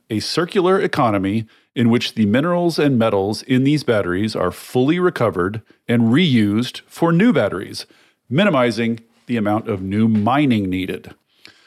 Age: 40-59